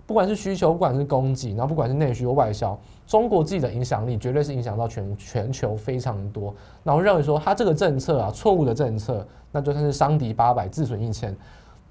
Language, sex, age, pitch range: Chinese, male, 20-39, 115-155 Hz